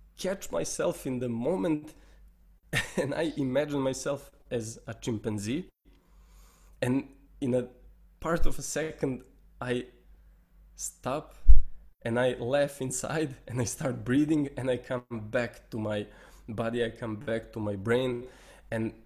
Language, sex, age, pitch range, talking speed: English, male, 20-39, 115-140 Hz, 135 wpm